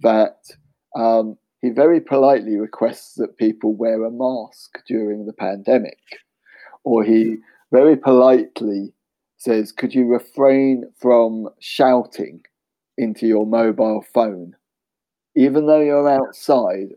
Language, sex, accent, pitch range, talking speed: English, male, British, 110-160 Hz, 115 wpm